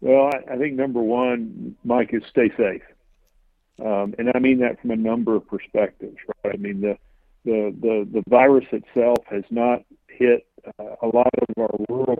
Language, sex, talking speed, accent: English, male, 180 wpm, American